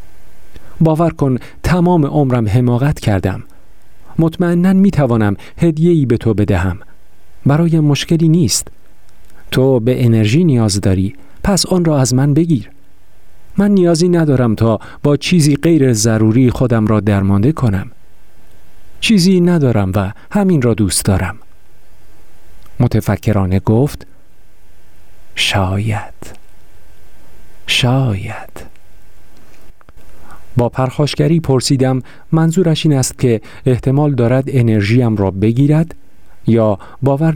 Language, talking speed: Persian, 100 wpm